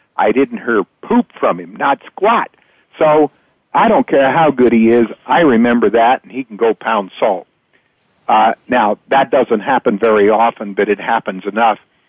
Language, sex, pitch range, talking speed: English, male, 100-120 Hz, 180 wpm